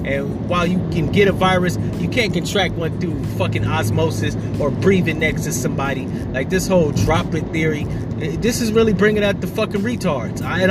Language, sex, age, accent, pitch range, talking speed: English, male, 30-49, American, 170-200 Hz, 185 wpm